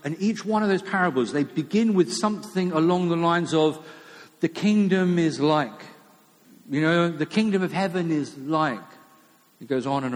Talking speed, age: 175 wpm, 50-69